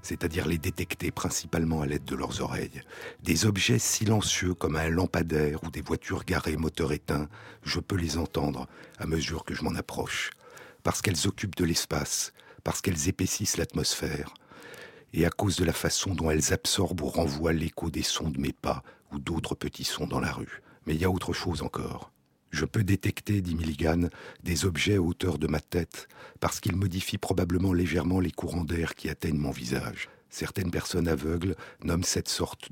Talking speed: 185 wpm